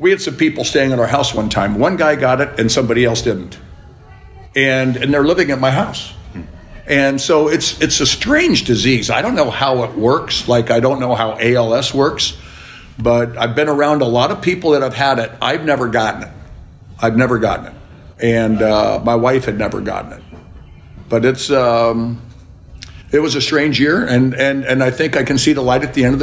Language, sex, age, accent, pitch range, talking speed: English, male, 60-79, American, 110-135 Hz, 215 wpm